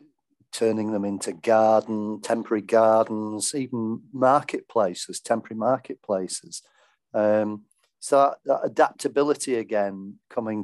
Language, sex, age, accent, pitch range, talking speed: English, male, 40-59, British, 105-130 Hz, 95 wpm